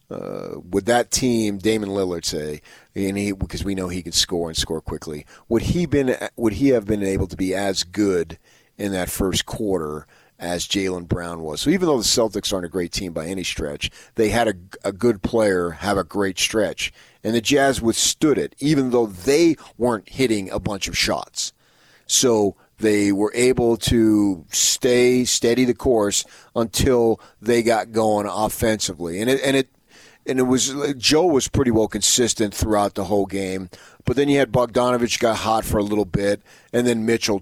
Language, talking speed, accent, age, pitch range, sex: English, 185 wpm, American, 40-59, 90-115 Hz, male